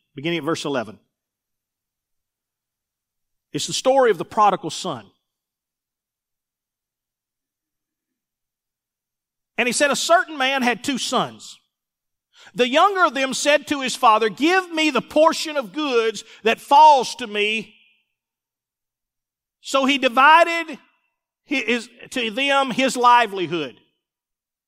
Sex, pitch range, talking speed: male, 230-315 Hz, 110 wpm